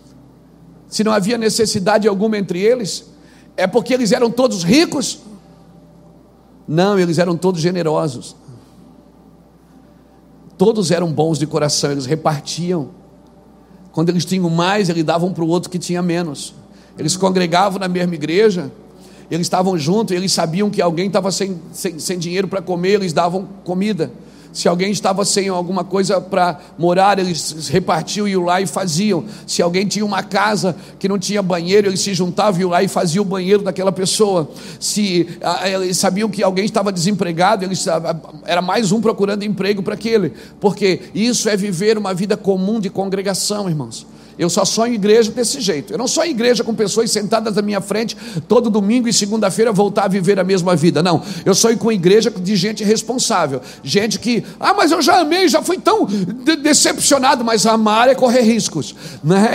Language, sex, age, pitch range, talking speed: Portuguese, male, 50-69, 180-225 Hz, 175 wpm